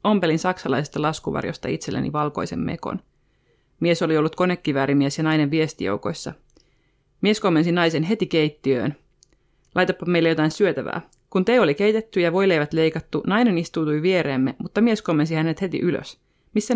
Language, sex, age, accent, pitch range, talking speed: Finnish, female, 30-49, native, 150-180 Hz, 140 wpm